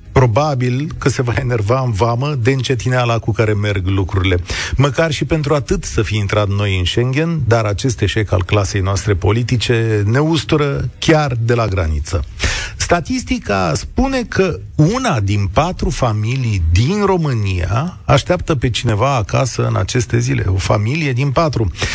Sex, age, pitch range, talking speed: male, 40-59, 100-145 Hz, 155 wpm